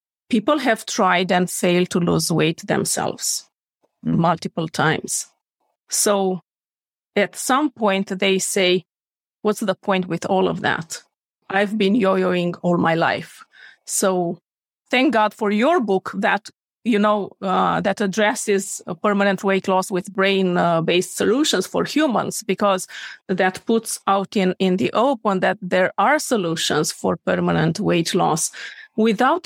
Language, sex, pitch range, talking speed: English, female, 180-215 Hz, 140 wpm